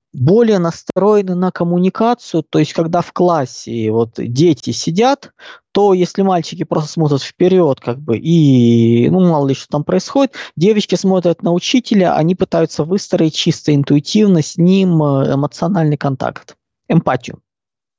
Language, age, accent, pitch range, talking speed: Russian, 20-39, native, 155-200 Hz, 135 wpm